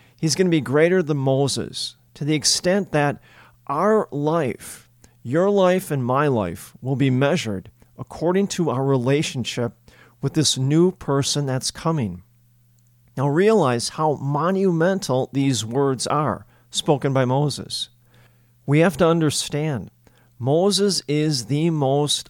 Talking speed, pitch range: 130 wpm, 120-155 Hz